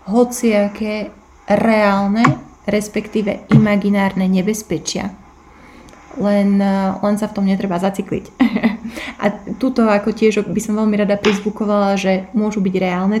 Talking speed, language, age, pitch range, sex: 120 wpm, Slovak, 30-49, 195-225 Hz, female